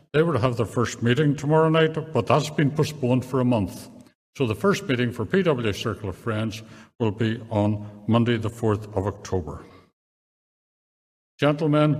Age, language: 60-79, English